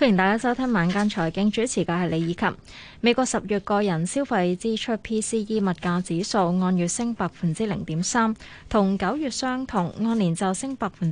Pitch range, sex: 180-235 Hz, female